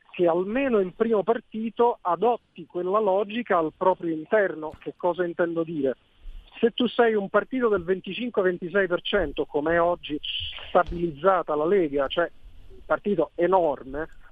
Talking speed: 135 wpm